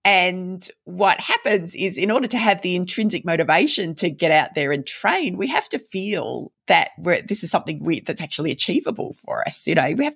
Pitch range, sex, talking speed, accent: 145-190 Hz, female, 200 wpm, Australian